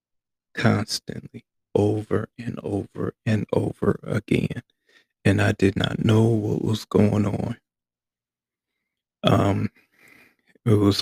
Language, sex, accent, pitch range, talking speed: English, male, American, 85-115 Hz, 105 wpm